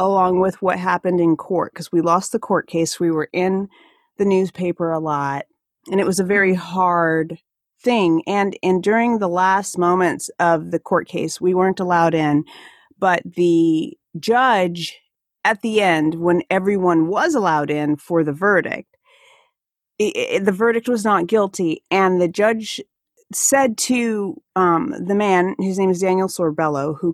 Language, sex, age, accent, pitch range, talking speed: English, female, 40-59, American, 170-225 Hz, 160 wpm